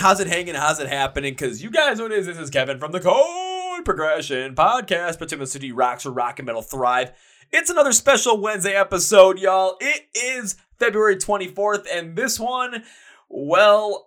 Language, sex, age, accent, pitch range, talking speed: English, male, 20-39, American, 140-195 Hz, 180 wpm